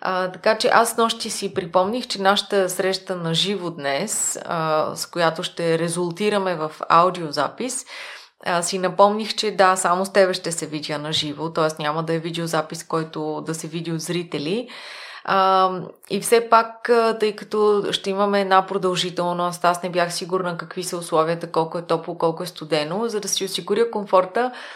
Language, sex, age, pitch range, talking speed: Bulgarian, female, 20-39, 170-205 Hz, 170 wpm